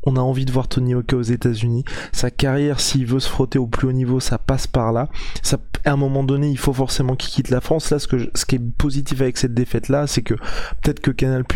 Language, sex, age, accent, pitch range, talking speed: French, male, 20-39, French, 125-145 Hz, 270 wpm